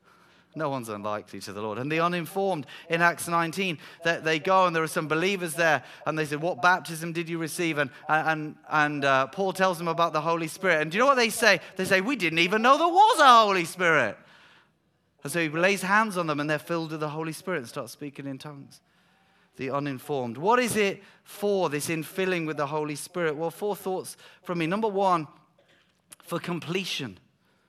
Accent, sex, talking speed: British, male, 210 wpm